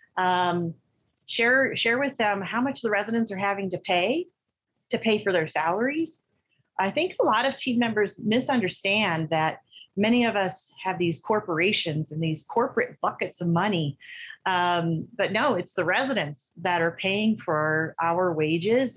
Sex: female